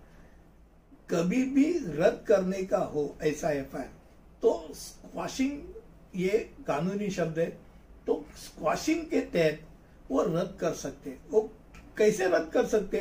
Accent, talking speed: native, 130 wpm